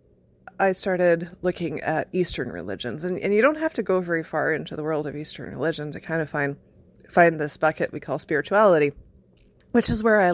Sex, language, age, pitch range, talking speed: female, English, 40-59, 150-195 Hz, 205 wpm